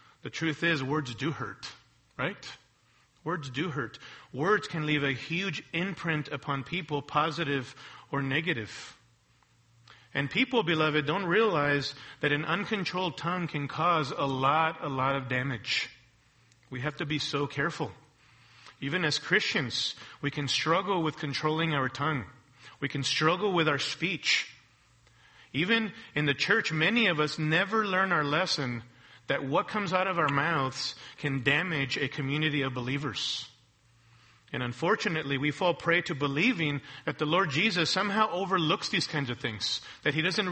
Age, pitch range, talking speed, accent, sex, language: 40-59, 135-165 Hz, 155 wpm, American, male, English